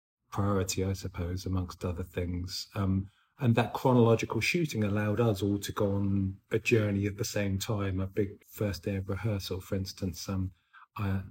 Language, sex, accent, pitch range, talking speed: English, male, British, 100-115 Hz, 175 wpm